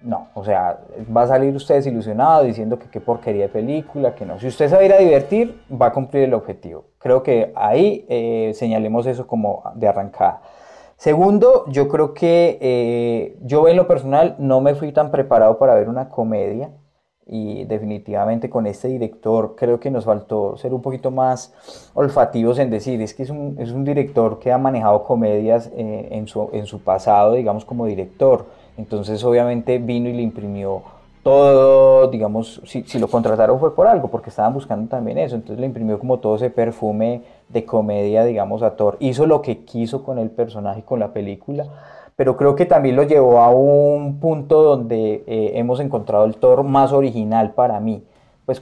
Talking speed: 190 wpm